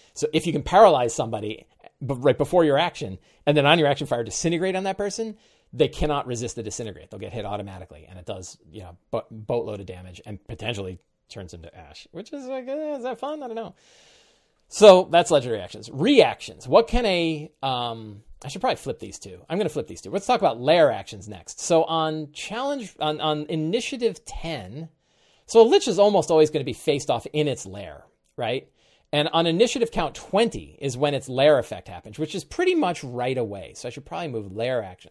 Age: 30-49